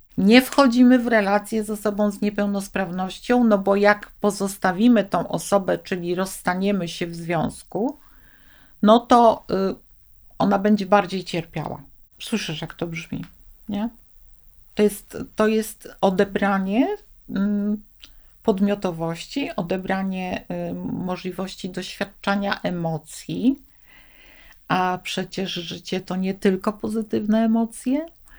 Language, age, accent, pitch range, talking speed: Polish, 50-69, native, 180-215 Hz, 100 wpm